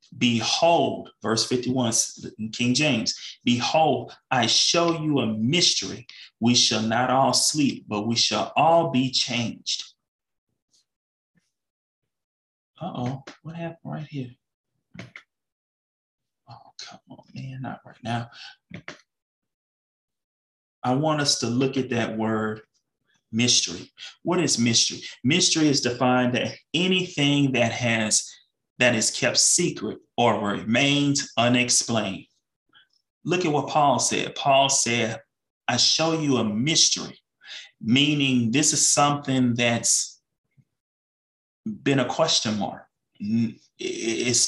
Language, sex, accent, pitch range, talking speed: English, male, American, 115-140 Hz, 115 wpm